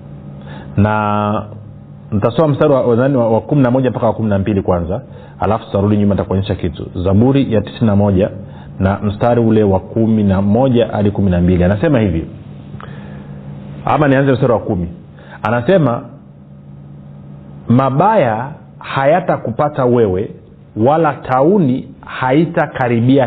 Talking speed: 105 wpm